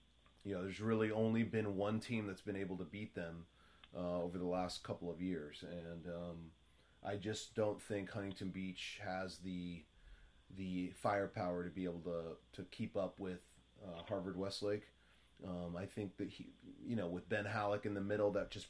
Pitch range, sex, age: 85-100 Hz, male, 30-49